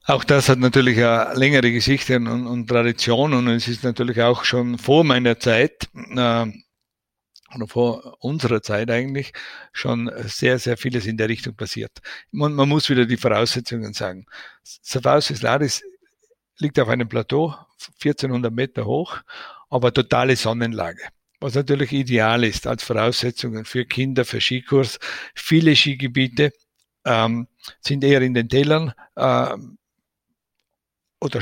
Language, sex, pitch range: German, male, 120-140 Hz